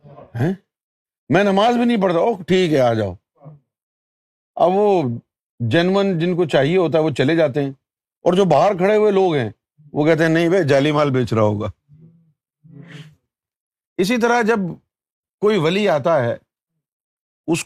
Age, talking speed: 50-69, 160 wpm